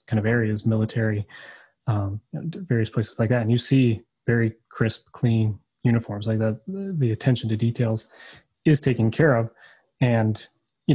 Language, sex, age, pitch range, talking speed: English, male, 30-49, 110-130 Hz, 150 wpm